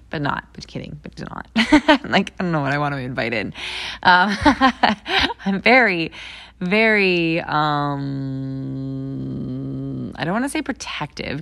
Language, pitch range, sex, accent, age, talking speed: English, 140-205 Hz, female, American, 20-39, 140 wpm